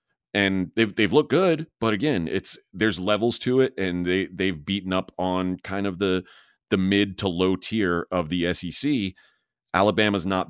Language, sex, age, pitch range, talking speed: English, male, 30-49, 85-100 Hz, 175 wpm